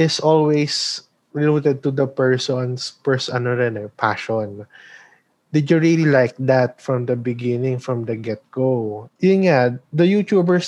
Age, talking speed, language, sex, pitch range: 20-39, 120 wpm, Filipino, male, 125-155 Hz